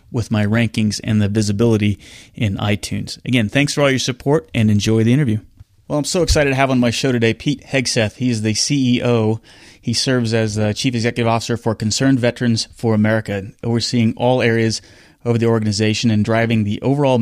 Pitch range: 110-125 Hz